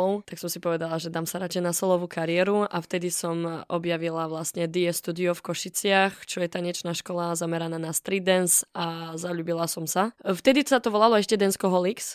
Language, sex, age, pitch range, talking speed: Slovak, female, 20-39, 170-190 Hz, 195 wpm